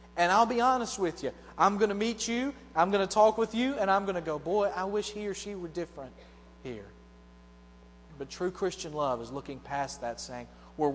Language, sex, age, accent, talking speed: English, male, 30-49, American, 225 wpm